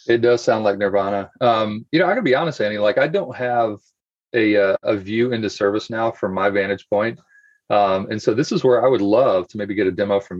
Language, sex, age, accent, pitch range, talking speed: English, male, 30-49, American, 100-160 Hz, 240 wpm